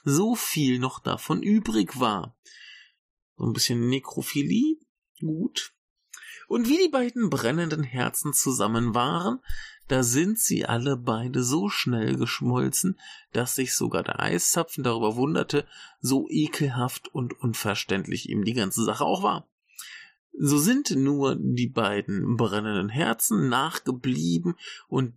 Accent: German